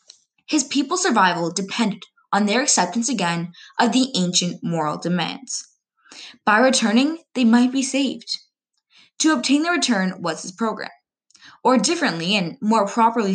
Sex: female